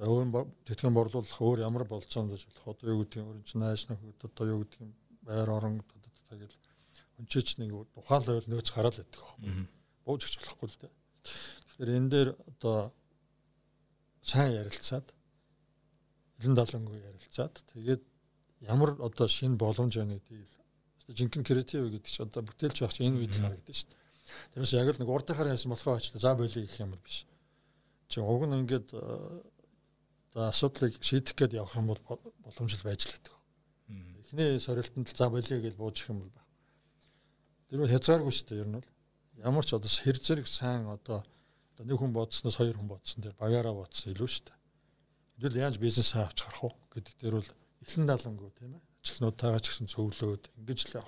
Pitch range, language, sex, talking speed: 110-130 Hz, Russian, male, 100 wpm